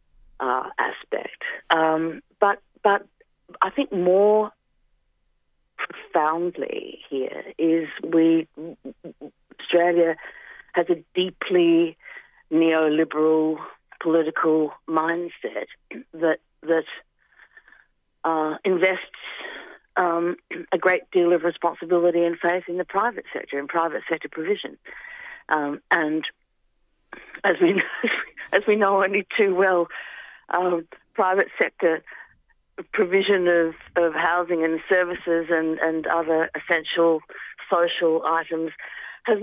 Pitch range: 160-200 Hz